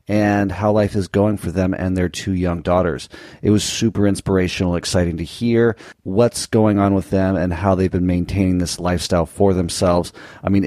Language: English